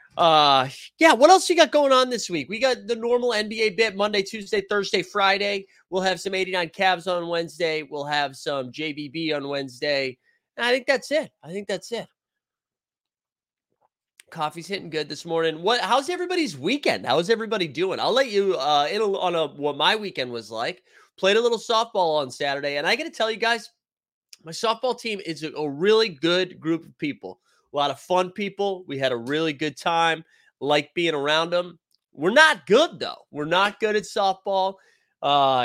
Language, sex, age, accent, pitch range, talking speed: English, male, 30-49, American, 155-230 Hz, 195 wpm